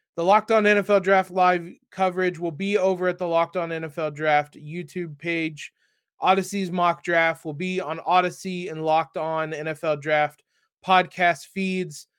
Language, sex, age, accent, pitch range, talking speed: English, male, 20-39, American, 150-180 Hz, 160 wpm